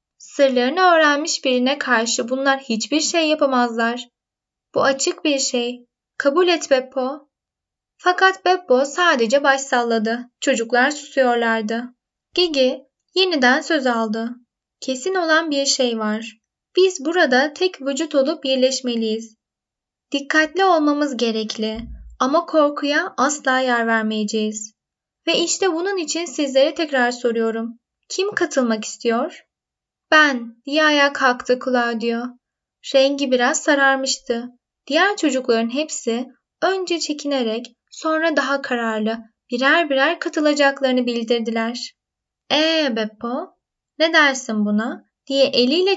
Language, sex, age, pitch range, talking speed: Turkish, female, 10-29, 240-305 Hz, 110 wpm